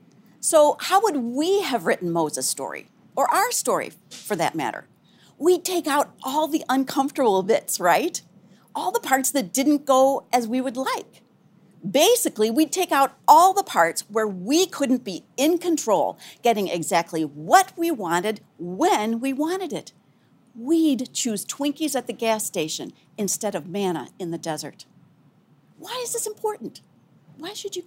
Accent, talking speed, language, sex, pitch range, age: American, 160 wpm, English, female, 195-310 Hz, 50-69